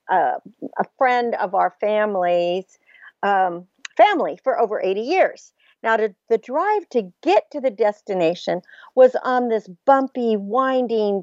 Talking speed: 135 wpm